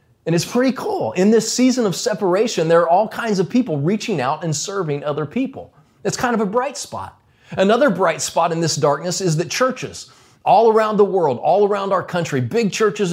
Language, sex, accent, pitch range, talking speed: English, male, American, 140-200 Hz, 210 wpm